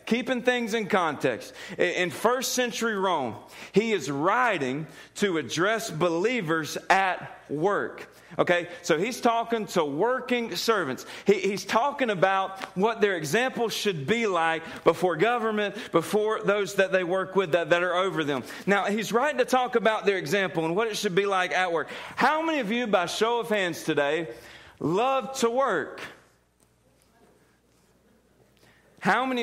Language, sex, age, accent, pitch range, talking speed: English, male, 40-59, American, 180-245 Hz, 150 wpm